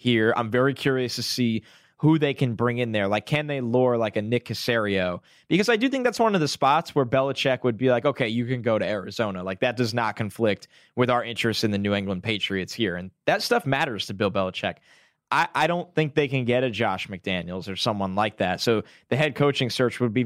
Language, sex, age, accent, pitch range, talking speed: English, male, 20-39, American, 110-150 Hz, 245 wpm